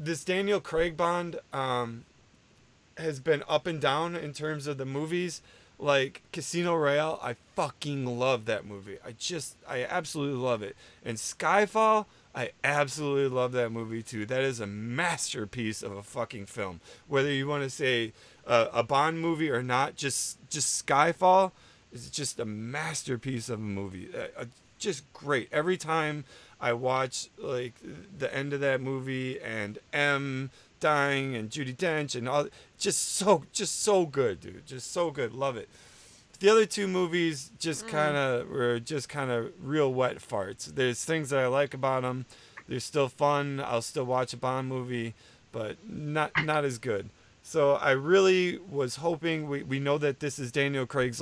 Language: English